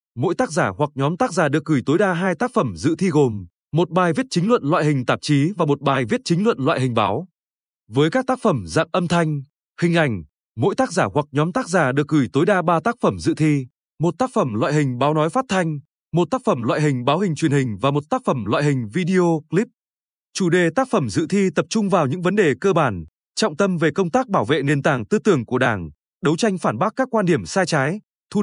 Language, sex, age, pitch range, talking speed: Vietnamese, male, 20-39, 145-200 Hz, 260 wpm